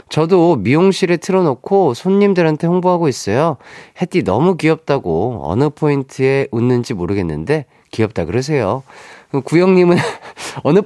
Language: Korean